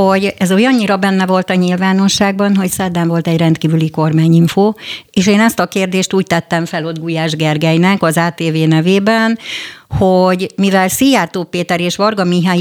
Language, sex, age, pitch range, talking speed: Hungarian, female, 50-69, 165-200 Hz, 160 wpm